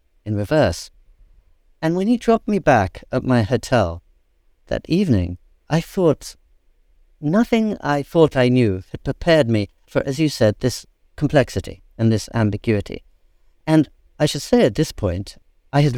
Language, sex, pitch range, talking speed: English, male, 105-145 Hz, 155 wpm